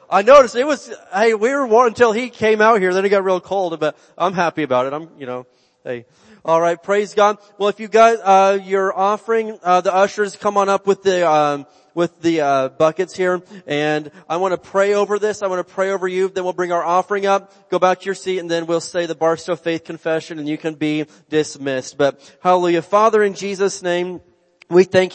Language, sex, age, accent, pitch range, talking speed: English, male, 30-49, American, 160-195 Hz, 235 wpm